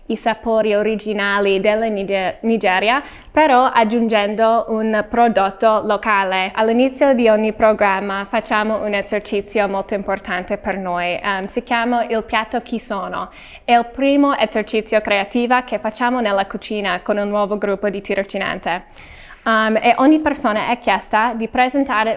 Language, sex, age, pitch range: Italian, female, 10-29, 200-235 Hz